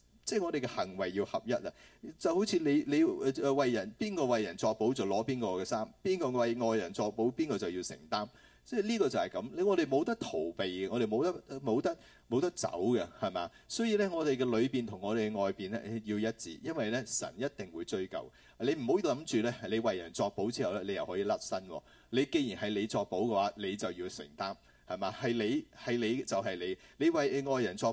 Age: 30-49